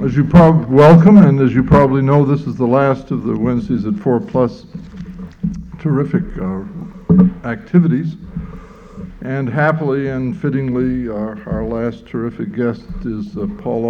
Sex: male